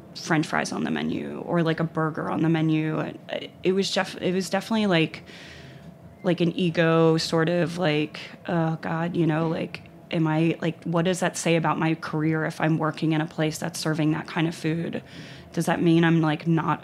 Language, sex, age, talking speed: English, female, 30-49, 205 wpm